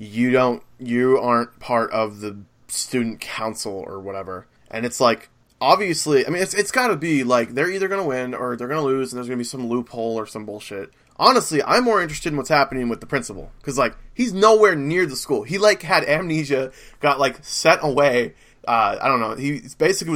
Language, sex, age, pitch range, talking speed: English, male, 20-39, 120-160 Hz, 210 wpm